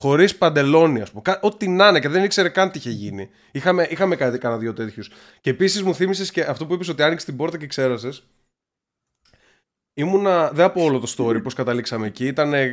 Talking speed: 210 wpm